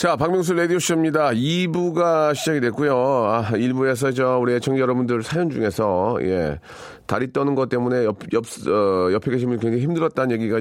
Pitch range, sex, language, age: 120-165 Hz, male, Korean, 40-59